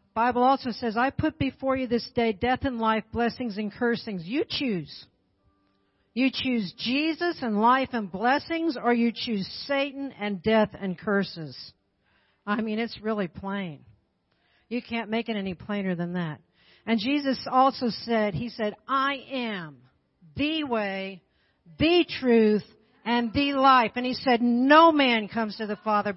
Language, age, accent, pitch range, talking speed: English, 50-69, American, 185-250 Hz, 160 wpm